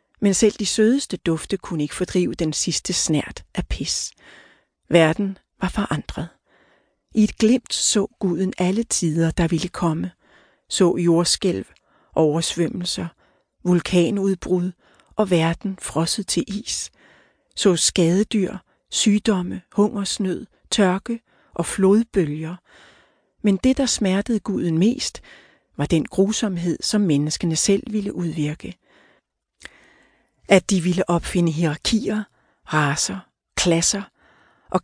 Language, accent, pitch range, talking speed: Danish, native, 170-205 Hz, 110 wpm